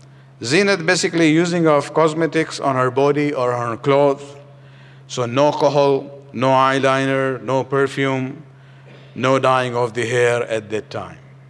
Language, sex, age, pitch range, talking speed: English, male, 50-69, 130-145 Hz, 140 wpm